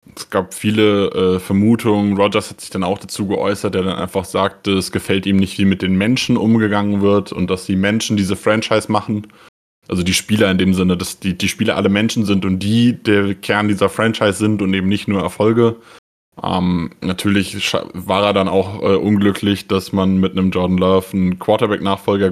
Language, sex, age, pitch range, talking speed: German, male, 20-39, 95-105 Hz, 200 wpm